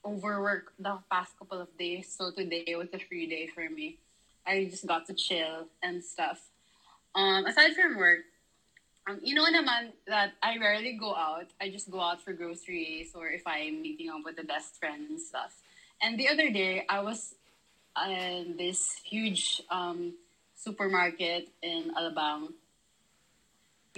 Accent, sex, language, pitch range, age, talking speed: Filipino, female, English, 175-235 Hz, 20-39, 160 wpm